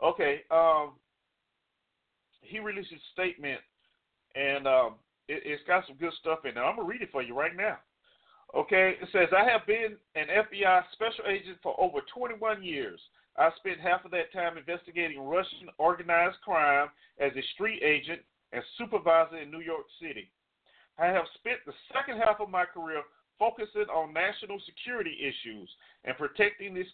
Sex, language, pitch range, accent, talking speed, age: male, English, 165-215 Hz, American, 170 wpm, 40-59